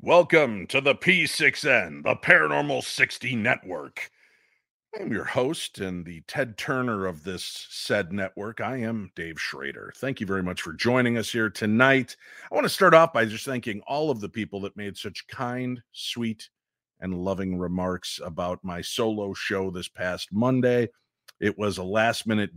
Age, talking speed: 50-69, 165 wpm